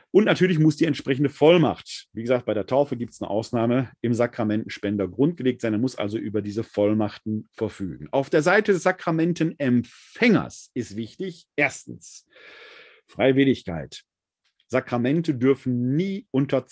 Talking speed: 140 wpm